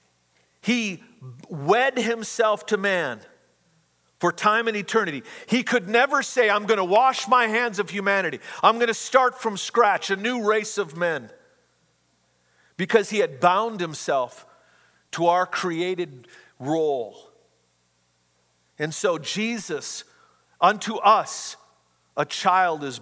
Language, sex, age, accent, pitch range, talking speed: English, male, 50-69, American, 125-210 Hz, 125 wpm